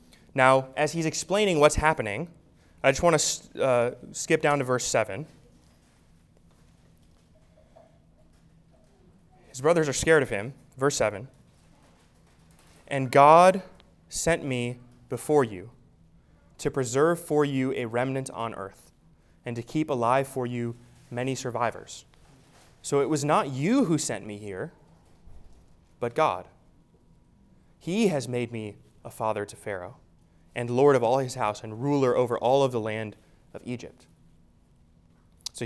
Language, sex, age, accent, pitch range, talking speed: English, male, 20-39, American, 115-150 Hz, 135 wpm